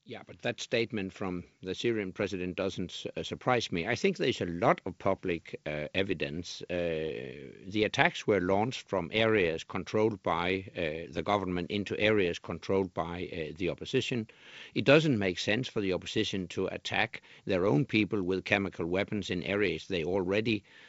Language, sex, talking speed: English, male, 165 wpm